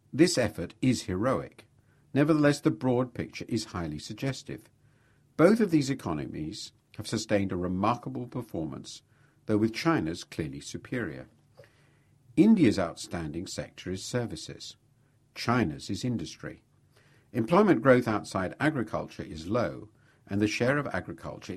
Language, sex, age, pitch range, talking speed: English, male, 50-69, 105-135 Hz, 120 wpm